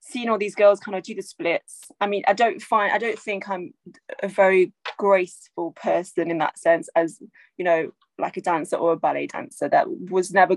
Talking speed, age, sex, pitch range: 215 wpm, 20-39, female, 170-220 Hz